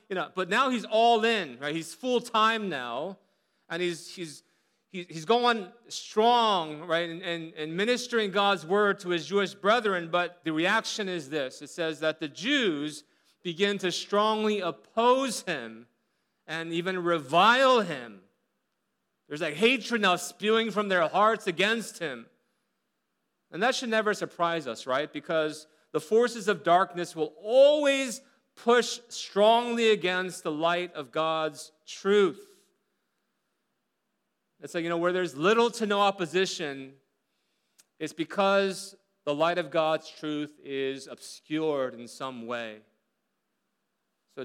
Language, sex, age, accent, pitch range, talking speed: English, male, 40-59, American, 155-210 Hz, 135 wpm